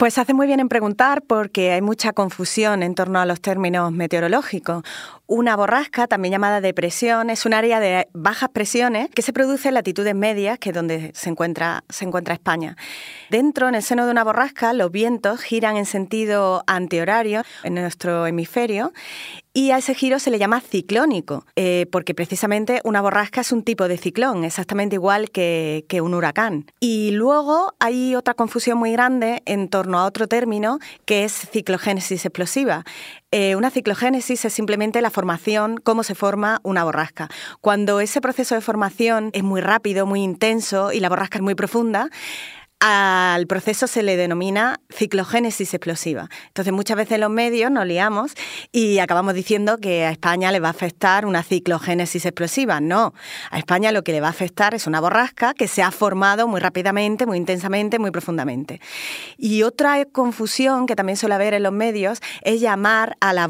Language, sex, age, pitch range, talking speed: Spanish, female, 30-49, 185-230 Hz, 180 wpm